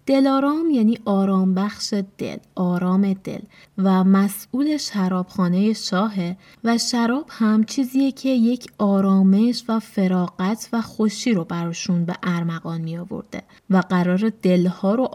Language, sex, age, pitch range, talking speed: Persian, female, 20-39, 185-245 Hz, 125 wpm